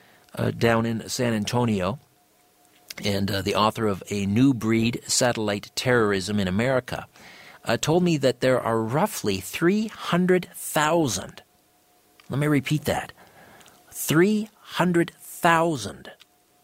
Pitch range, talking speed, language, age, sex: 105-145 Hz, 110 wpm, English, 50-69, male